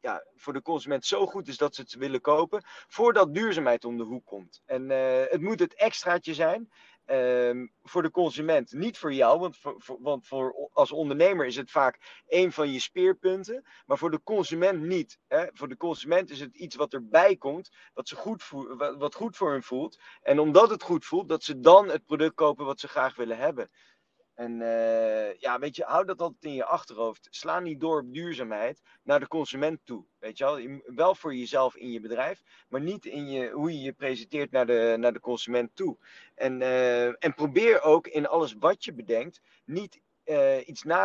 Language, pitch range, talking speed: Dutch, 130-175 Hz, 205 wpm